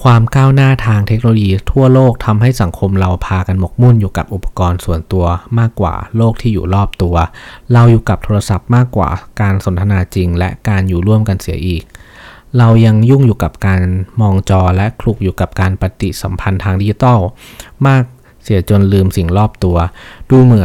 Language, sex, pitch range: Thai, male, 90-115 Hz